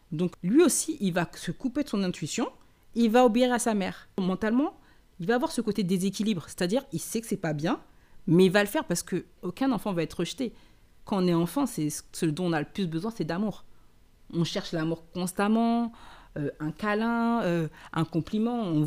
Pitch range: 160-215 Hz